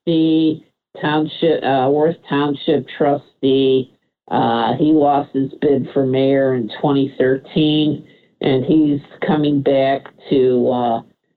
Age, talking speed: 50-69, 110 wpm